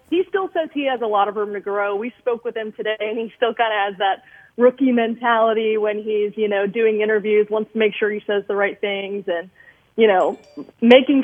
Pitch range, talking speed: 200-240 Hz, 235 wpm